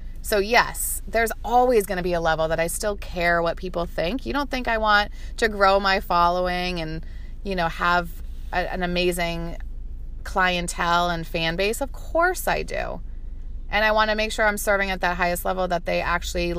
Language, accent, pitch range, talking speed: English, American, 165-195 Hz, 200 wpm